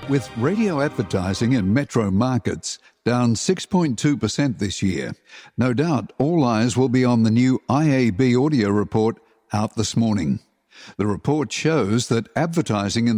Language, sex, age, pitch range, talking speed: English, male, 60-79, 110-145 Hz, 140 wpm